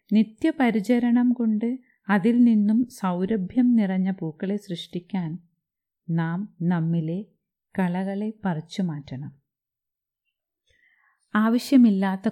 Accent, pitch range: native, 170-220 Hz